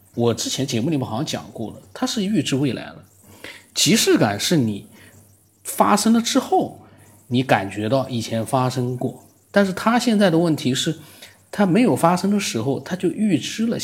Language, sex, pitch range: Chinese, male, 105-150 Hz